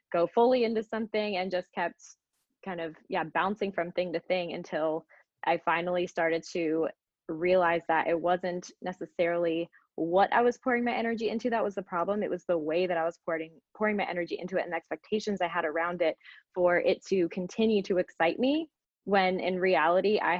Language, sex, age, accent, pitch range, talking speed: English, female, 20-39, American, 165-190 Hz, 195 wpm